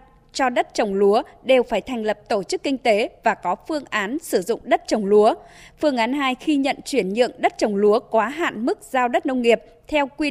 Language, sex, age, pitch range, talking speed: Vietnamese, female, 20-39, 215-290 Hz, 235 wpm